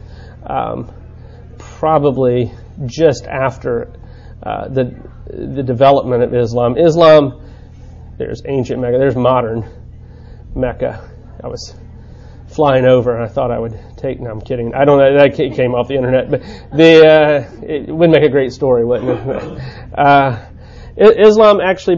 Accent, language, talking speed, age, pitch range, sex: American, English, 140 wpm, 30-49, 120-150 Hz, male